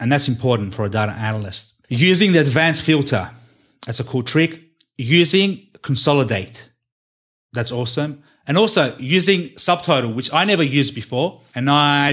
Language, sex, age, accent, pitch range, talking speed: English, male, 30-49, Australian, 120-165 Hz, 150 wpm